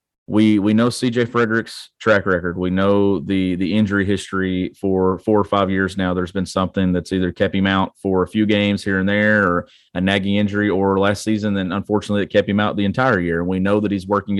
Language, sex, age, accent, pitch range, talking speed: English, male, 30-49, American, 95-105 Hz, 230 wpm